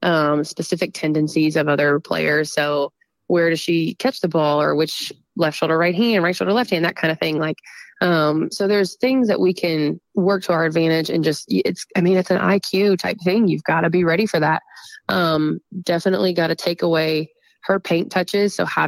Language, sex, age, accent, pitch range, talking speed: English, female, 20-39, American, 155-185 Hz, 215 wpm